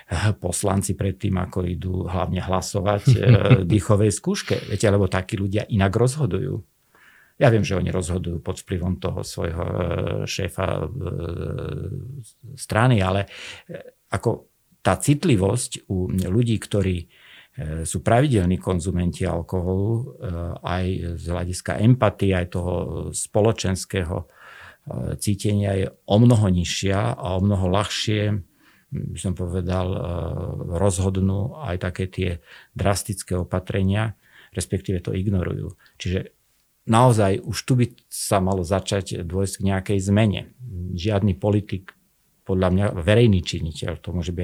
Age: 50-69